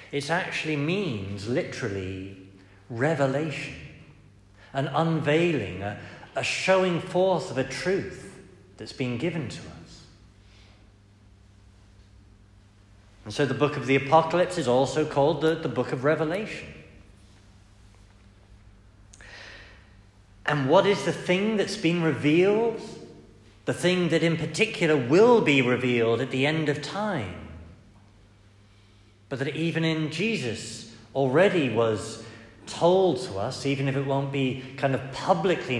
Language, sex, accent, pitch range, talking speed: English, male, British, 100-155 Hz, 120 wpm